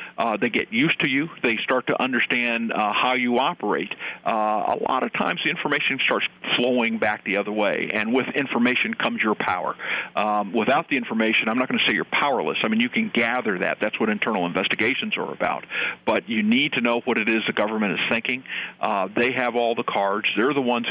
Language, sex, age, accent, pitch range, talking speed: English, male, 50-69, American, 110-140 Hz, 220 wpm